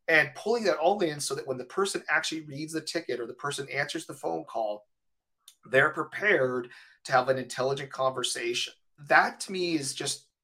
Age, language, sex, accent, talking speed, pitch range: 30-49, English, male, American, 190 wpm, 130-165 Hz